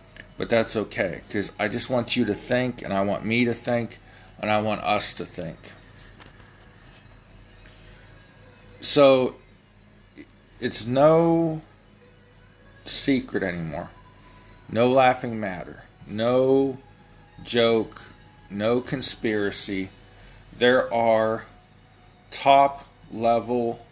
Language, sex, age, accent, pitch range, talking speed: English, male, 40-59, American, 100-120 Hz, 95 wpm